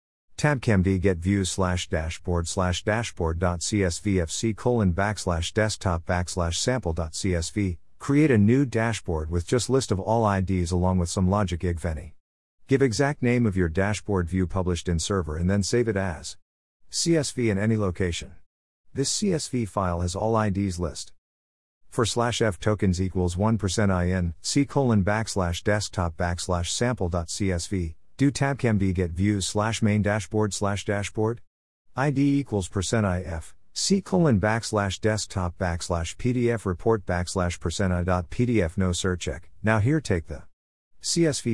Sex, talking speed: male, 150 wpm